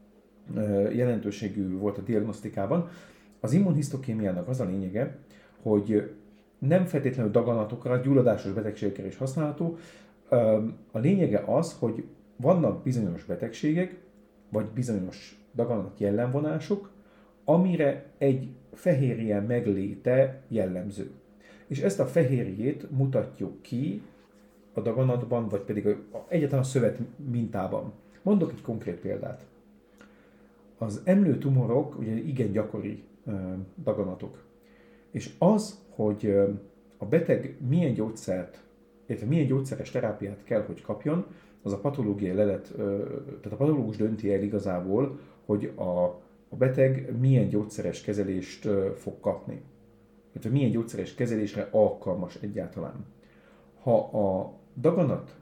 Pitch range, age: 100-130 Hz, 40-59